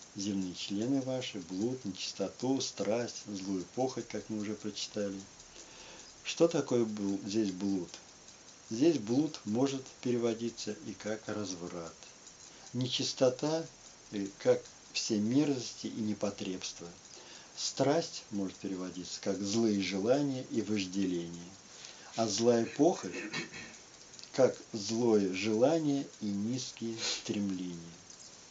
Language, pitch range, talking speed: Russian, 95-125 Hz, 95 wpm